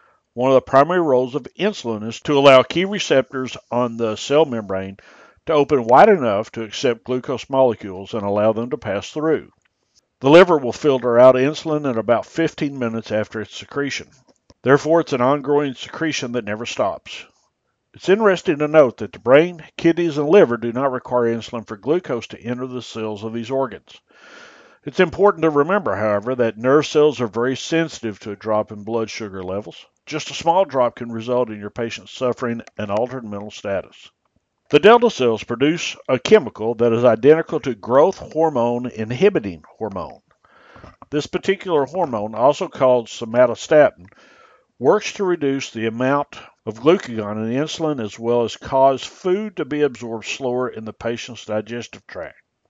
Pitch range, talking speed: 115-150 Hz, 170 wpm